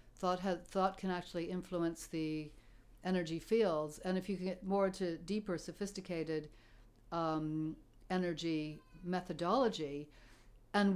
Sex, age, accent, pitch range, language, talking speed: female, 60-79, American, 150-185 Hz, English, 115 wpm